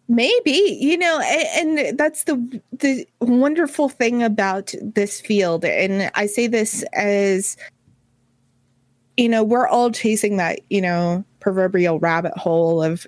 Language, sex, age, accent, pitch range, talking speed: English, female, 30-49, American, 185-245 Hz, 140 wpm